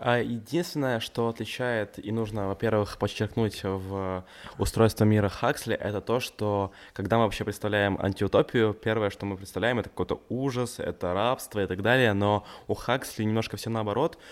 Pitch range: 95-115 Hz